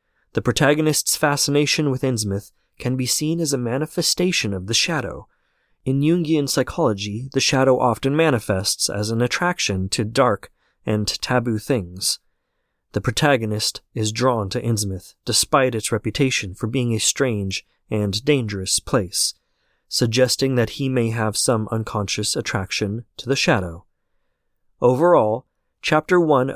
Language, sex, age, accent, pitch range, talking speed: English, male, 30-49, American, 105-135 Hz, 135 wpm